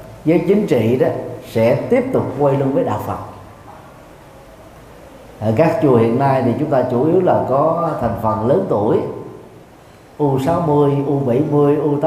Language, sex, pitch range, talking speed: Vietnamese, male, 110-145 Hz, 150 wpm